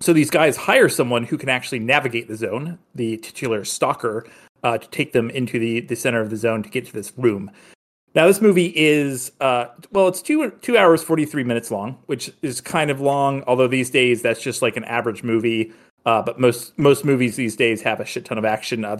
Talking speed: 225 wpm